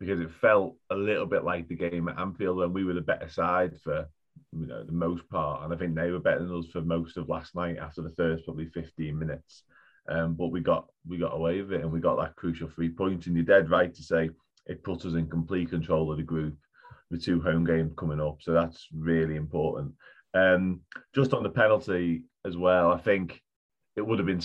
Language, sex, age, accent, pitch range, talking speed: English, male, 30-49, British, 80-95 Hz, 235 wpm